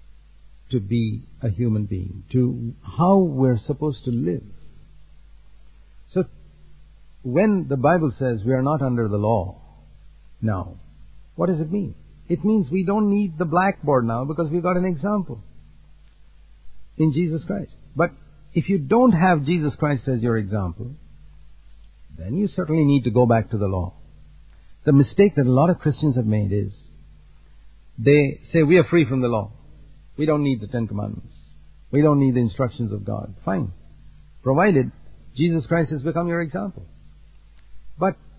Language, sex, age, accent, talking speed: English, male, 60-79, Indian, 160 wpm